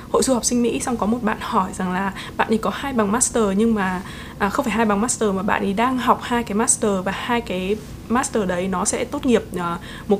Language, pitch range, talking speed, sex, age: Vietnamese, 205-245 Hz, 265 wpm, female, 20-39